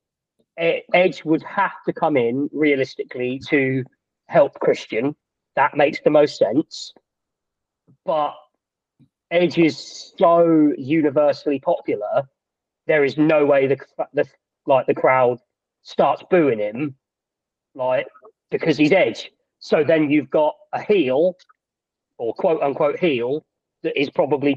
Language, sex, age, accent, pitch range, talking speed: English, male, 40-59, British, 135-165 Hz, 120 wpm